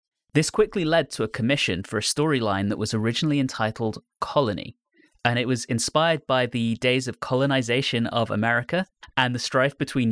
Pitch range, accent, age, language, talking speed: 110-145 Hz, British, 30-49, English, 170 wpm